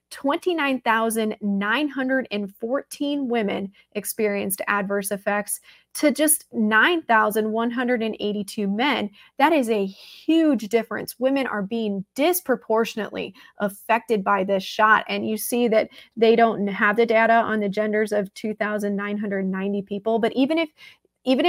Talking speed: 115 wpm